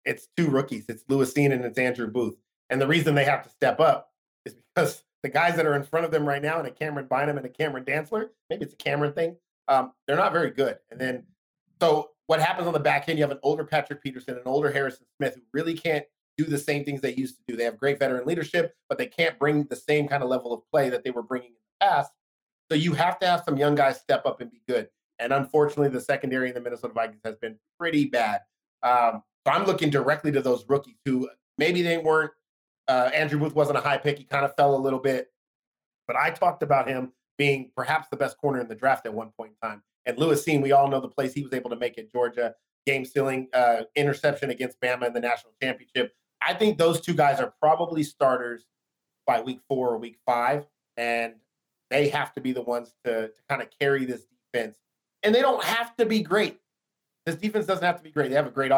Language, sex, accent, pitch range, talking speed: English, male, American, 125-155 Hz, 245 wpm